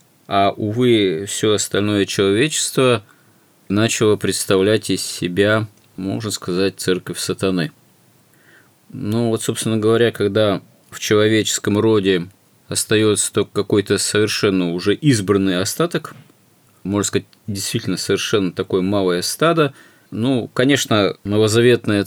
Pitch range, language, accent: 95-120 Hz, Russian, native